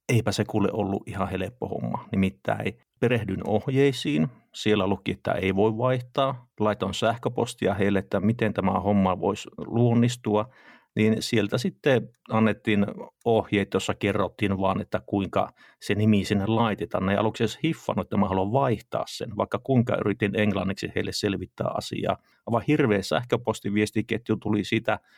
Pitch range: 100-115 Hz